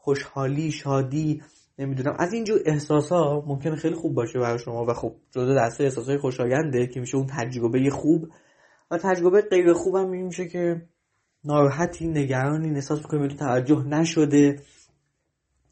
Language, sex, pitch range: Persian, male, 130-170 Hz